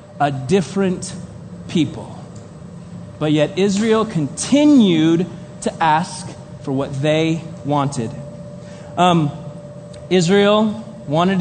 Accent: American